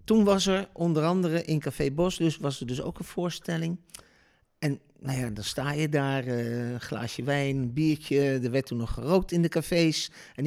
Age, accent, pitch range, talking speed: 50-69, Dutch, 130-165 Hz, 205 wpm